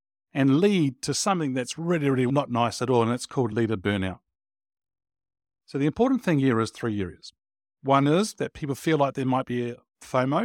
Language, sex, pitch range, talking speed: English, male, 105-140 Hz, 200 wpm